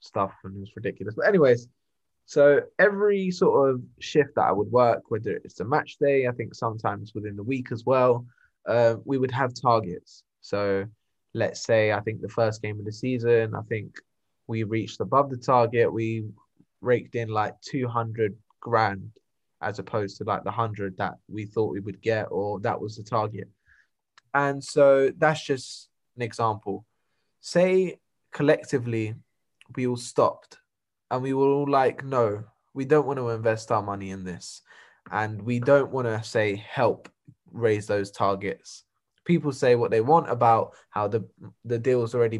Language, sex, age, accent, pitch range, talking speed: English, male, 10-29, British, 110-130 Hz, 175 wpm